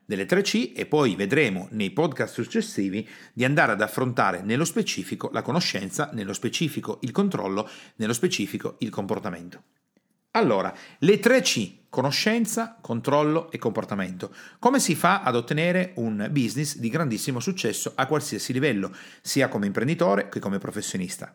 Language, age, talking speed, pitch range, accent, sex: Italian, 40-59, 145 wpm, 115-195 Hz, native, male